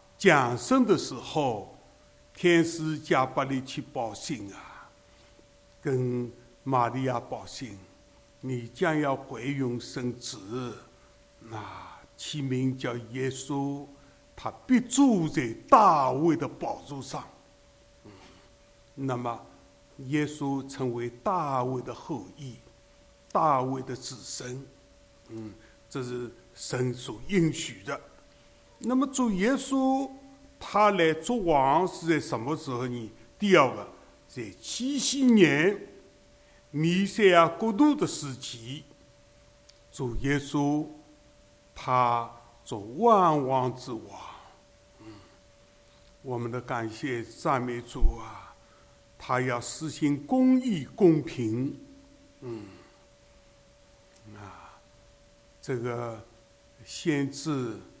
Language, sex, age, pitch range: English, male, 60-79, 115-155 Hz